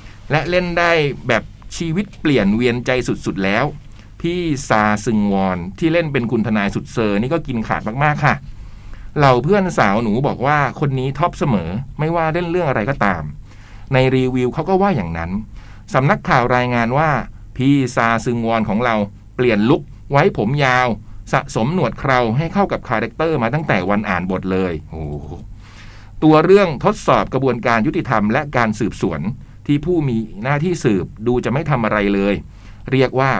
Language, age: Thai, 60-79